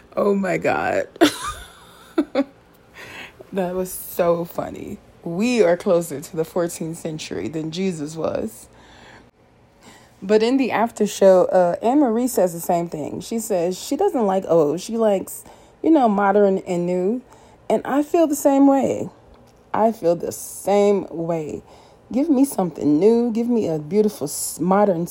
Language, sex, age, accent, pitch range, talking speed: English, female, 30-49, American, 175-230 Hz, 145 wpm